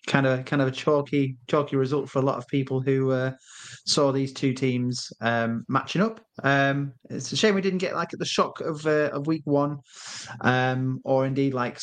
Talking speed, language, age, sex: 215 wpm, English, 30-49, male